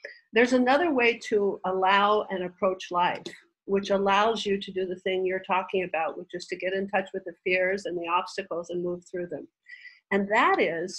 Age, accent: 50-69, American